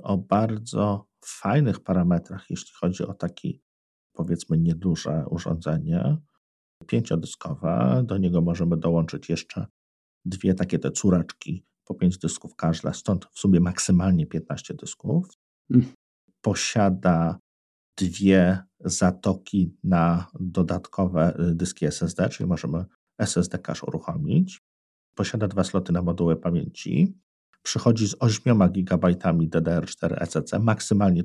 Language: Polish